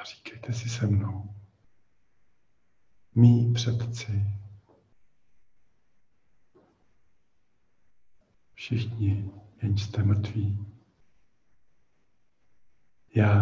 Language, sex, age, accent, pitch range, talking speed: Czech, male, 50-69, native, 95-110 Hz, 55 wpm